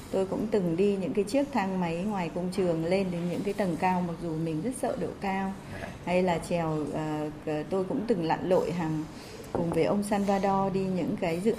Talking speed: 225 wpm